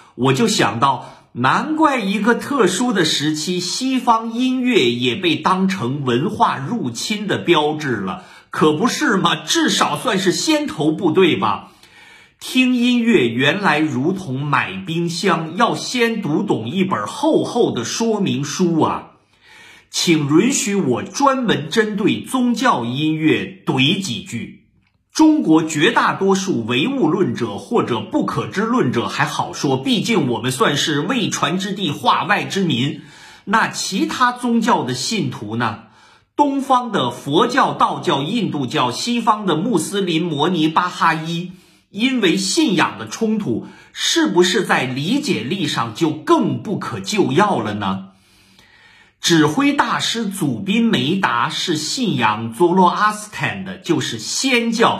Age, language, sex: 50-69, Chinese, male